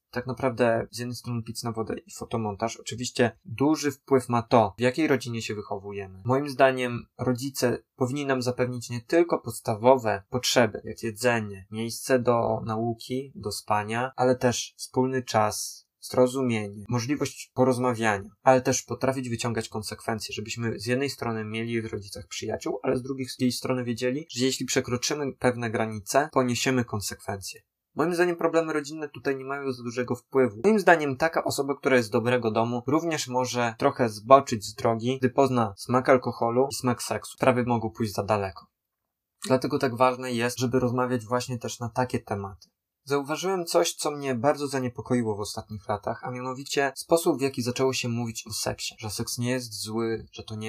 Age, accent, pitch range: 20-39, native, 110-130 Hz